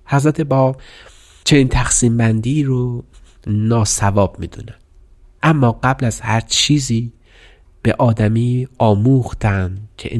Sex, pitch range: male, 100-125 Hz